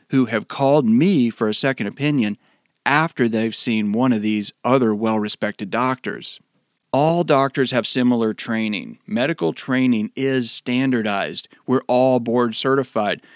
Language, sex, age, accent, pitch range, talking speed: English, male, 40-59, American, 115-145 Hz, 135 wpm